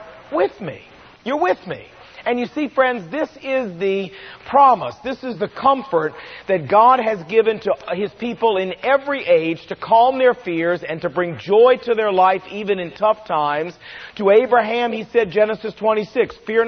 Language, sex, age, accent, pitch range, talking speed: English, male, 40-59, American, 190-235 Hz, 175 wpm